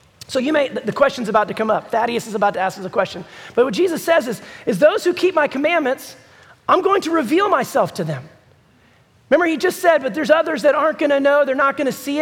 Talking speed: 245 wpm